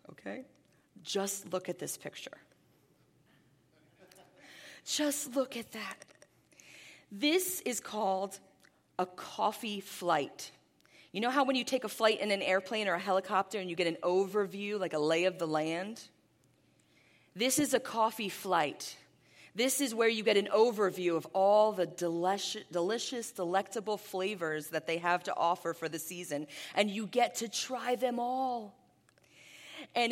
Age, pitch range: 30-49, 175-225 Hz